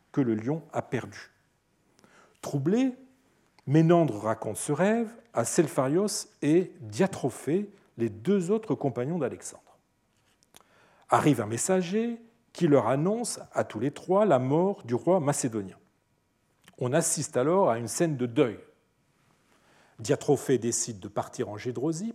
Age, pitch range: 40-59, 120-185 Hz